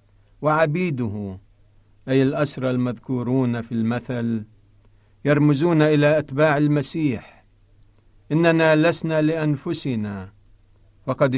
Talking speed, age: 75 wpm, 50-69